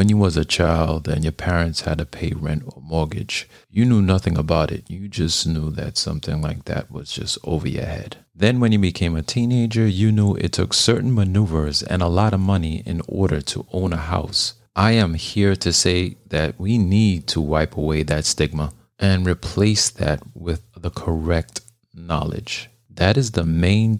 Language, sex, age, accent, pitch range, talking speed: English, male, 40-59, American, 80-110 Hz, 195 wpm